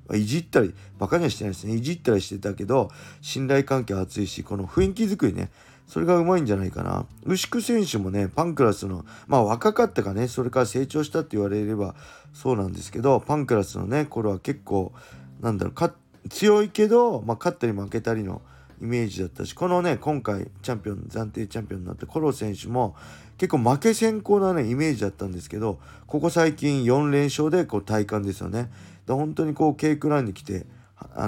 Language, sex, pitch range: Japanese, male, 100-140 Hz